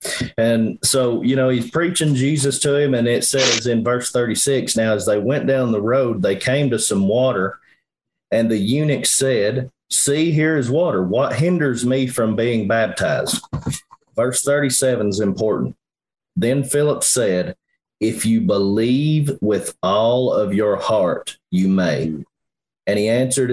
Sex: male